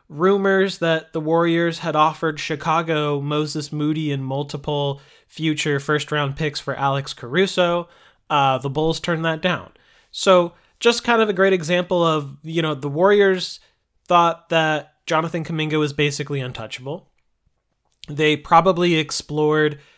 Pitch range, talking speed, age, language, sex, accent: 140-165 Hz, 135 wpm, 20-39, English, male, American